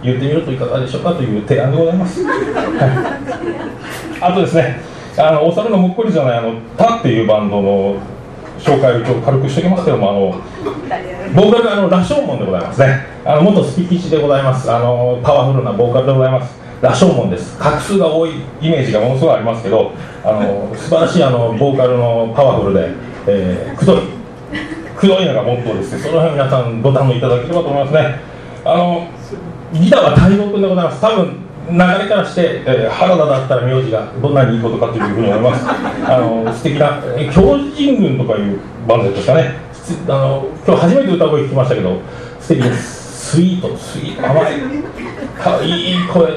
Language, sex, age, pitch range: Japanese, male, 40-59, 125-180 Hz